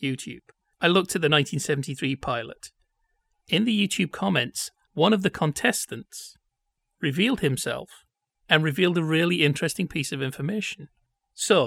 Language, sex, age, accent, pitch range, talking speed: English, male, 40-59, British, 145-200 Hz, 135 wpm